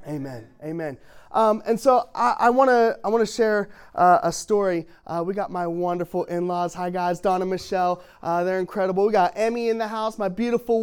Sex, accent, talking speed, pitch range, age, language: male, American, 200 wpm, 170-245 Hz, 20-39, English